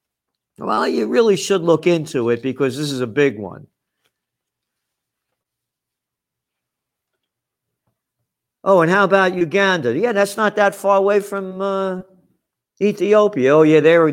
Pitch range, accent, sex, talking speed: 125-175 Hz, American, male, 125 wpm